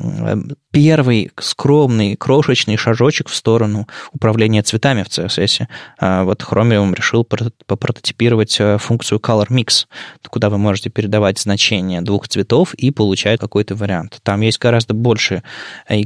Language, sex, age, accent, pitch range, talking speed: Russian, male, 20-39, native, 105-125 Hz, 125 wpm